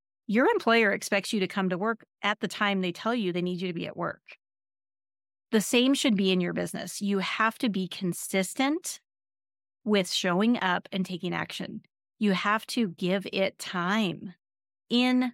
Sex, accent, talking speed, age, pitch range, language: female, American, 180 wpm, 40-59, 175-215 Hz, English